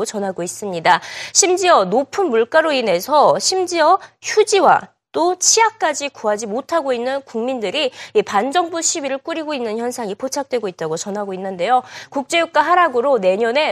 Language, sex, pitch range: Korean, female, 215-325 Hz